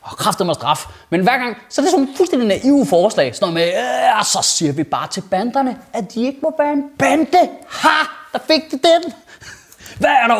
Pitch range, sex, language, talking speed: 145-235 Hz, male, Danish, 225 wpm